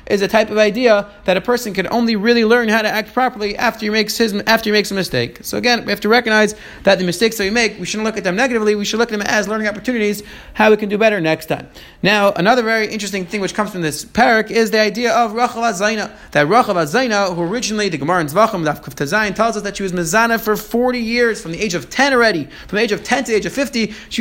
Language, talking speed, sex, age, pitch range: English, 275 wpm, male, 30-49, 195-230 Hz